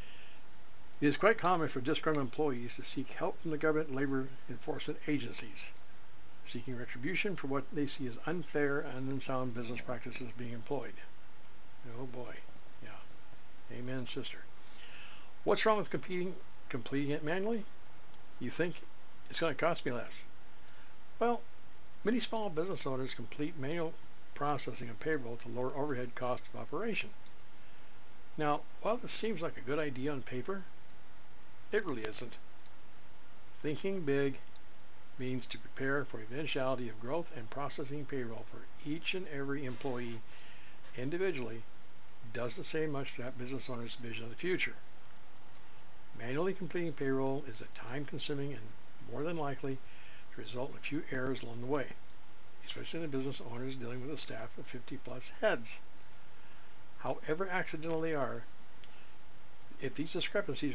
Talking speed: 145 wpm